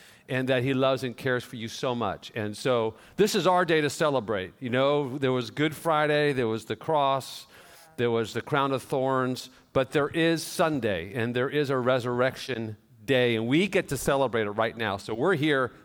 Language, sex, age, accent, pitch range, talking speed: English, male, 50-69, American, 120-150 Hz, 210 wpm